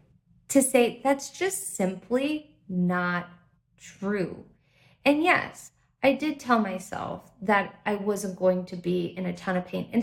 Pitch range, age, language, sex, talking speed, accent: 190-270 Hz, 30-49, English, female, 150 wpm, American